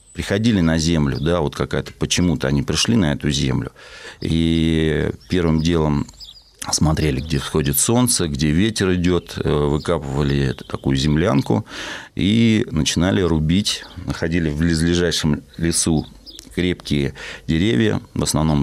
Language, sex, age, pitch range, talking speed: Russian, male, 40-59, 75-100 Hz, 115 wpm